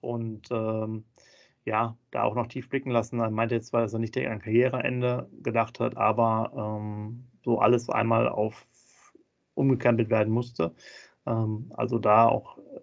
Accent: German